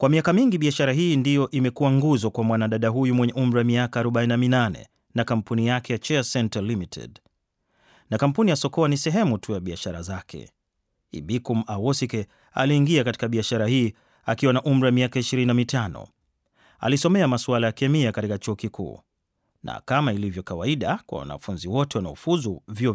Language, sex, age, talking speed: Swahili, male, 30-49, 160 wpm